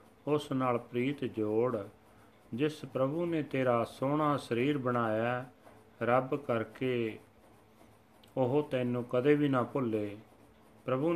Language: Punjabi